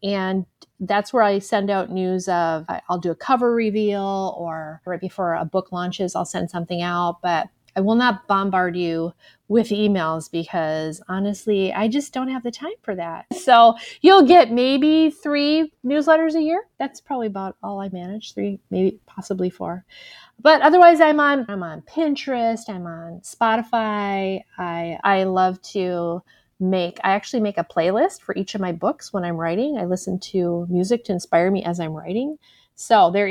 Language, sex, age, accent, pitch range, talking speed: English, female, 30-49, American, 180-225 Hz, 180 wpm